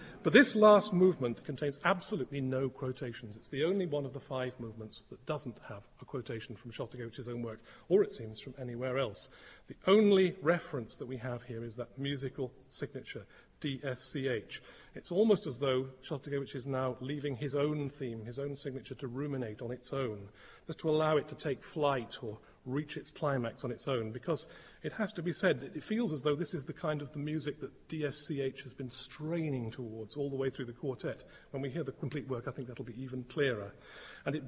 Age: 40-59